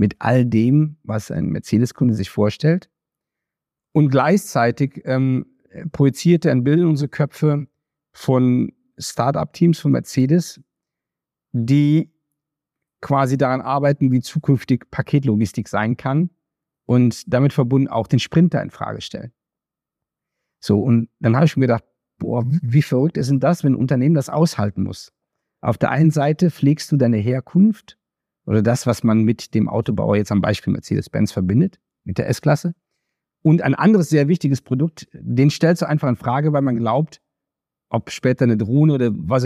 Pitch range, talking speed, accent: 115-150 Hz, 155 wpm, German